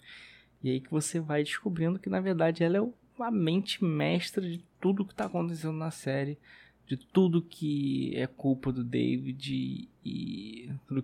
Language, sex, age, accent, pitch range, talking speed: Portuguese, male, 20-39, Brazilian, 125-155 Hz, 165 wpm